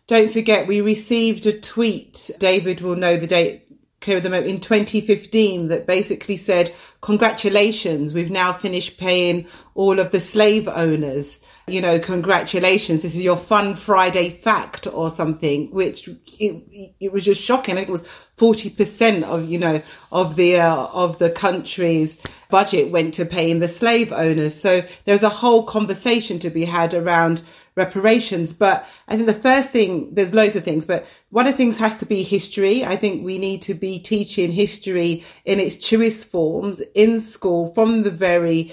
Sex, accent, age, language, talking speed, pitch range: female, British, 40-59, English, 170 wpm, 175-210 Hz